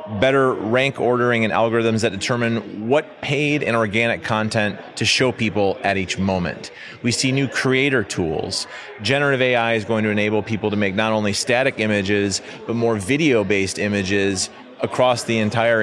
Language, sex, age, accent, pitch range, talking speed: English, male, 30-49, American, 100-120 Hz, 165 wpm